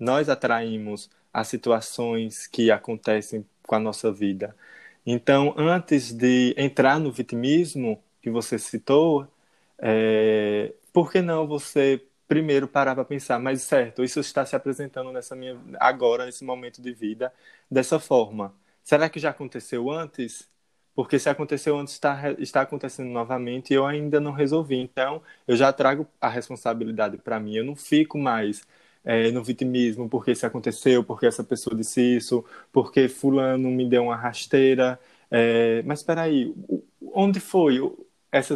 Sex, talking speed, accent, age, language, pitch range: male, 150 wpm, Brazilian, 20-39, Portuguese, 120-145 Hz